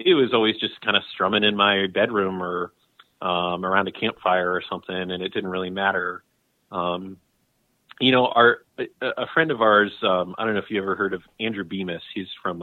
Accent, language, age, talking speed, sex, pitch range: American, English, 30-49, 205 wpm, male, 90-110 Hz